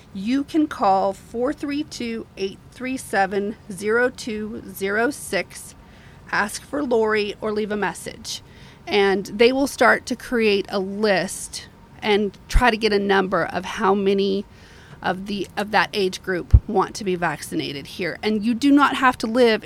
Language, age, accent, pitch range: English, 30-49, American, 195-235 Hz